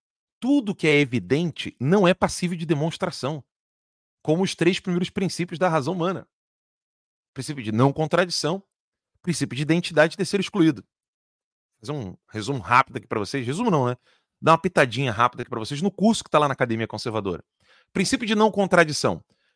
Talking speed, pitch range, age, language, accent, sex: 180 wpm, 150-200 Hz, 40-59, Portuguese, Brazilian, male